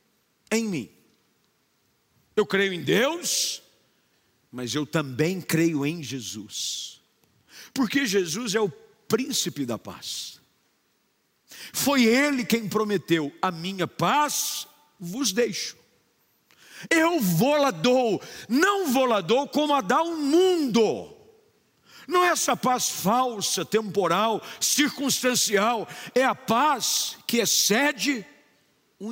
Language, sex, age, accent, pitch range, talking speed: Portuguese, male, 50-69, Brazilian, 195-275 Hz, 105 wpm